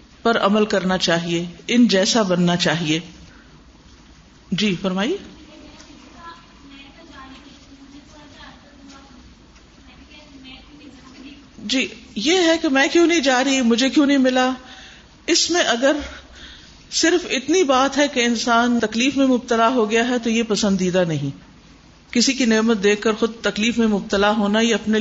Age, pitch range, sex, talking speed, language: 50-69, 215-275 Hz, female, 130 wpm, Urdu